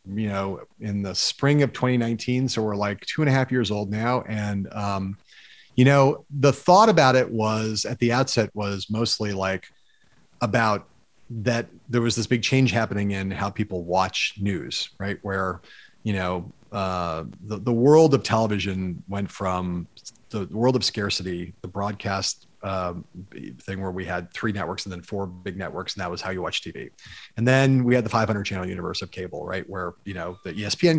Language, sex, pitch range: English, male, 95-125 Hz